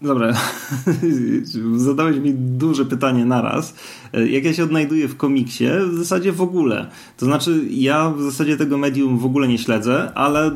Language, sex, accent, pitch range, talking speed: Polish, male, native, 120-150 Hz, 160 wpm